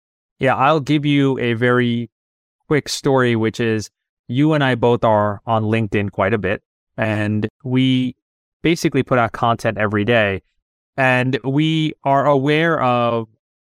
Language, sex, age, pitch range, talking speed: English, male, 30-49, 105-135 Hz, 145 wpm